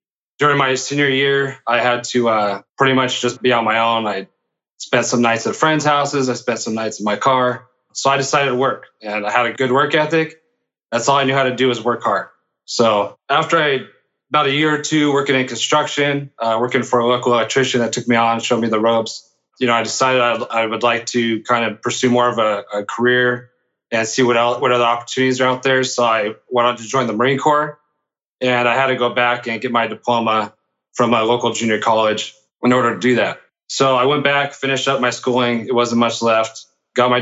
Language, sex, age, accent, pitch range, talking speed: English, male, 30-49, American, 115-130 Hz, 235 wpm